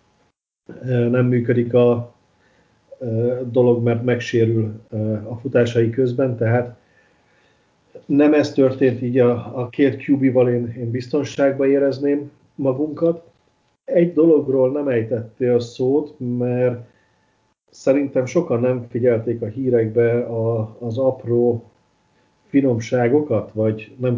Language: Hungarian